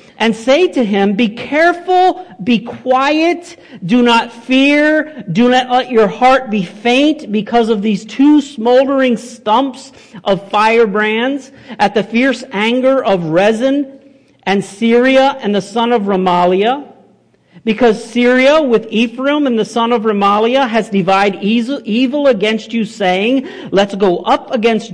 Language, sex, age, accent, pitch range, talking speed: English, male, 50-69, American, 215-265 Hz, 140 wpm